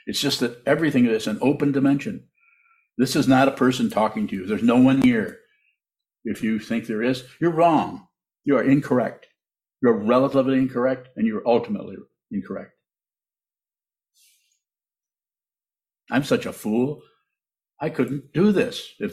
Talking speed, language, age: 145 wpm, English, 60-79